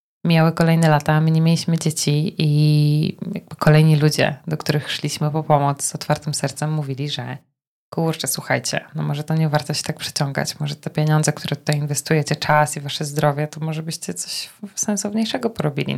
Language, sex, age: Polish, female, 20-39